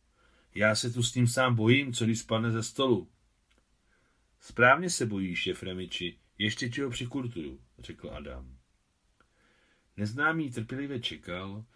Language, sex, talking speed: Czech, male, 120 wpm